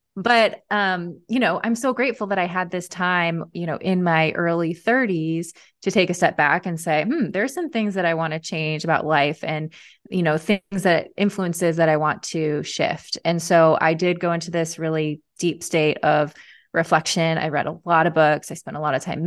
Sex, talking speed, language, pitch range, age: female, 220 wpm, English, 160-190 Hz, 20-39